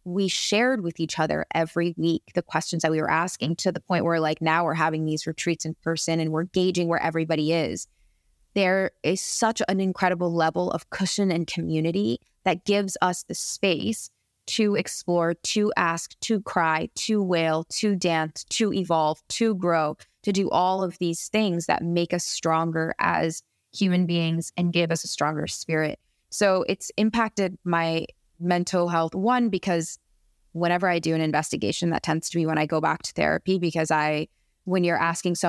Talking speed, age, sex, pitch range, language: 185 wpm, 20-39, female, 160-180 Hz, English